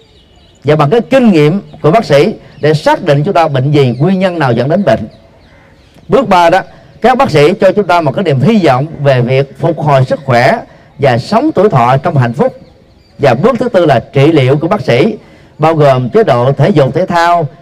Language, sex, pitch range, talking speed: Vietnamese, male, 130-180 Hz, 225 wpm